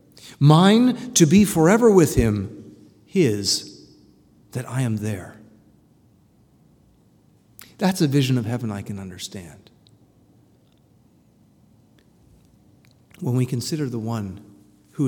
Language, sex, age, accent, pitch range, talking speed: English, male, 40-59, American, 100-145 Hz, 100 wpm